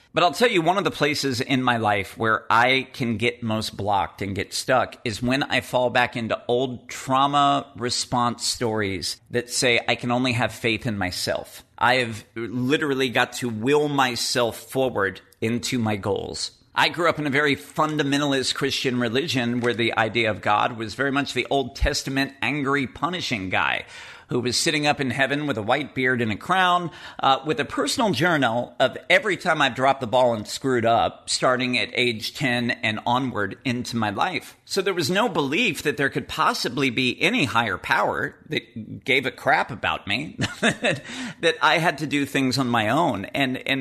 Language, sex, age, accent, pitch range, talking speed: English, male, 40-59, American, 115-140 Hz, 195 wpm